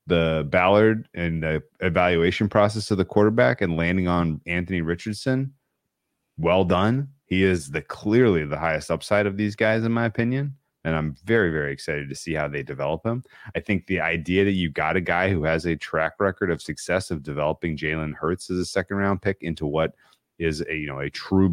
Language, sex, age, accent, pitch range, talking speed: English, male, 30-49, American, 80-100 Hz, 205 wpm